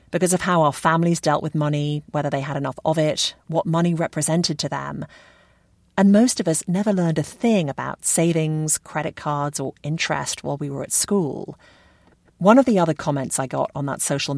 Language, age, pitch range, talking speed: English, 40-59, 140-175 Hz, 200 wpm